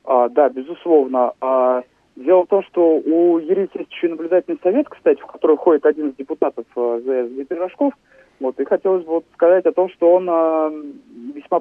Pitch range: 130-185 Hz